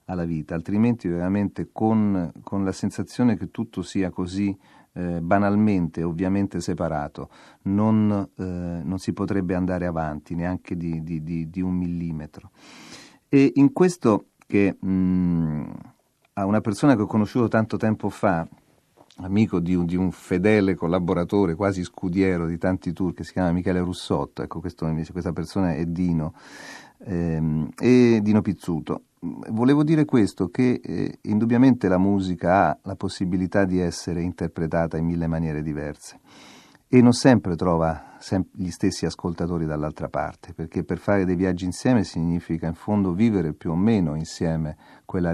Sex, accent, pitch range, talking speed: male, native, 85-100 Hz, 150 wpm